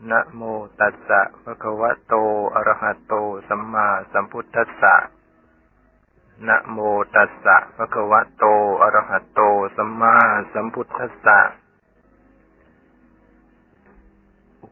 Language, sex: Thai, male